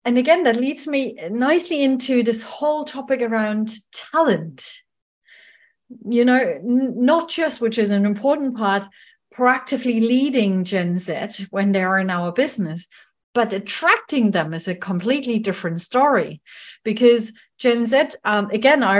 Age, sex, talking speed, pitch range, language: 30-49, female, 140 wpm, 200-265 Hz, English